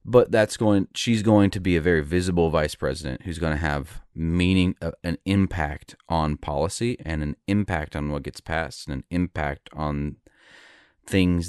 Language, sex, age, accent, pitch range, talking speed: English, male, 30-49, American, 75-95 Hz, 180 wpm